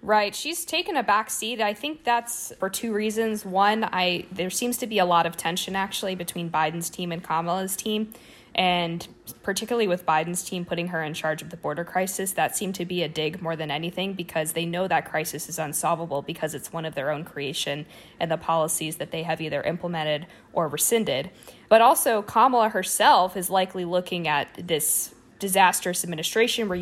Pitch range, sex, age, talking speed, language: 160-195 Hz, female, 20-39, 195 wpm, English